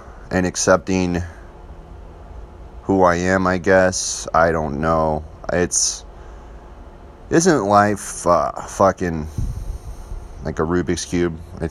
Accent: American